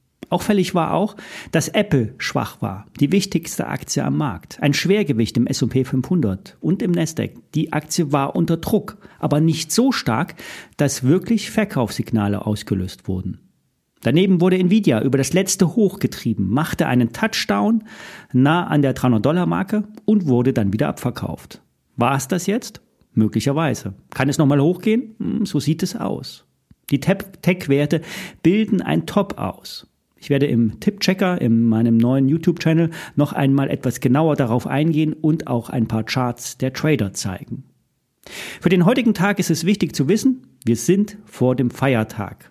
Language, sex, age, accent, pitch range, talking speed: German, male, 40-59, German, 125-185 Hz, 150 wpm